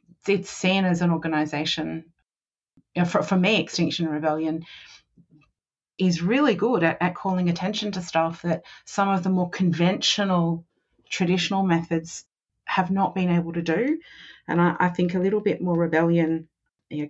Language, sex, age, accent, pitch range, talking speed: English, female, 30-49, Australian, 170-205 Hz, 150 wpm